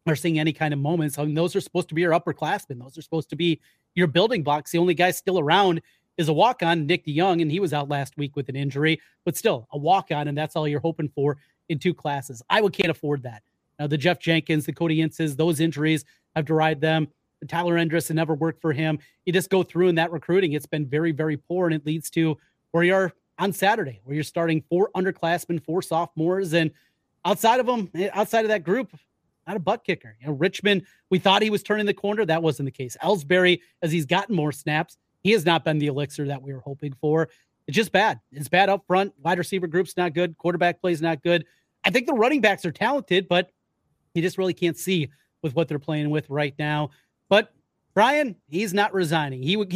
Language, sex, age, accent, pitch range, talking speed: English, male, 30-49, American, 155-185 Hz, 235 wpm